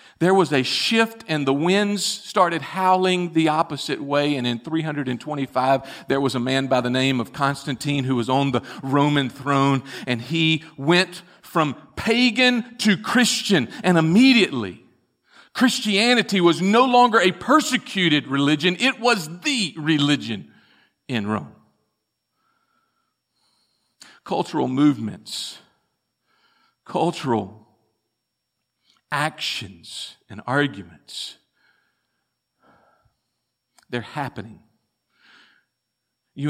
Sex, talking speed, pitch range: male, 100 wpm, 130-180 Hz